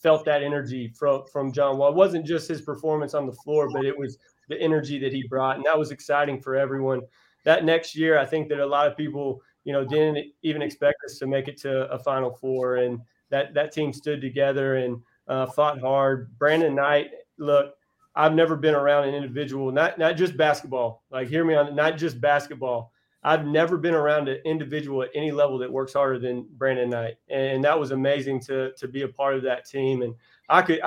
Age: 30-49